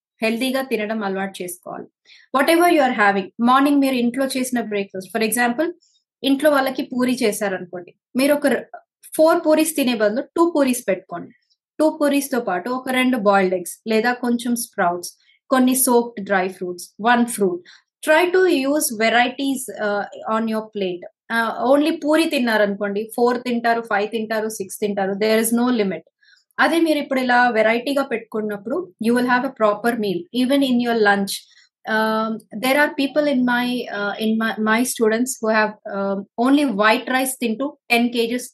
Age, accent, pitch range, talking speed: 20-39, native, 210-265 Hz, 155 wpm